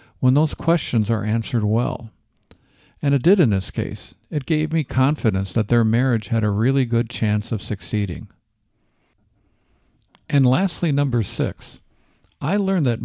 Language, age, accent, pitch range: English, 50-69, American, 110-135 Hz